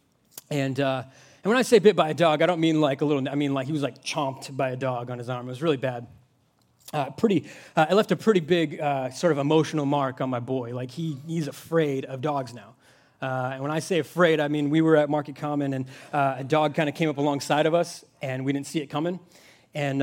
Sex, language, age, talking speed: male, English, 30-49, 260 wpm